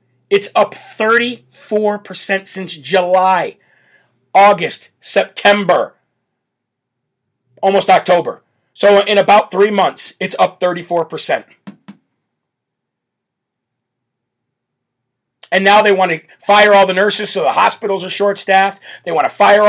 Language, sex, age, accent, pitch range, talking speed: English, male, 40-59, American, 165-195 Hz, 120 wpm